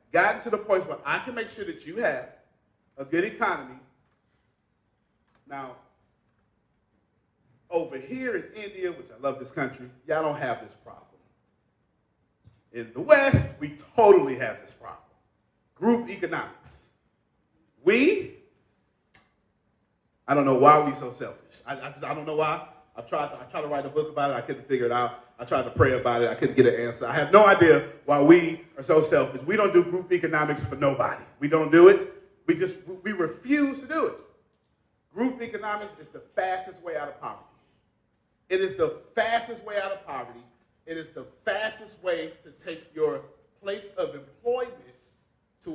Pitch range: 140-230 Hz